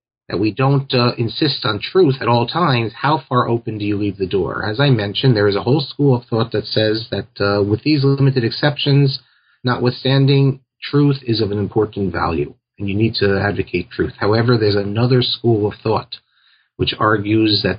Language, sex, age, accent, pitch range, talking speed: English, male, 40-59, American, 110-135 Hz, 195 wpm